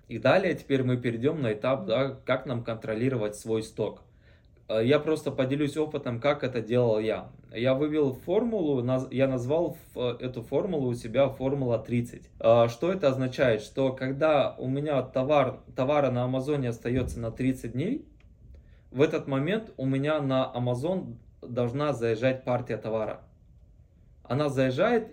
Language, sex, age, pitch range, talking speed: Russian, male, 20-39, 120-145 Hz, 145 wpm